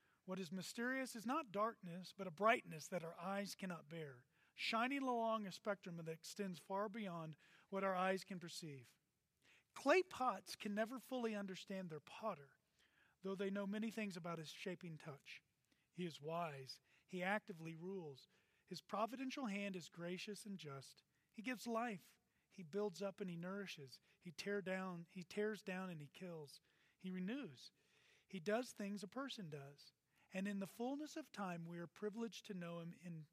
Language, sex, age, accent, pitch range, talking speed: English, male, 40-59, American, 170-215 Hz, 170 wpm